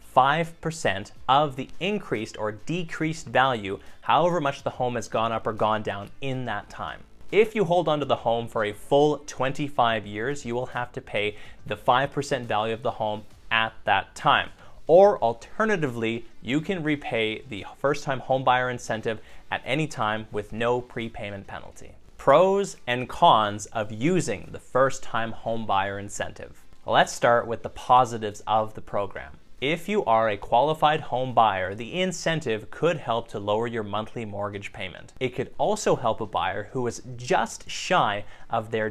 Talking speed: 170 wpm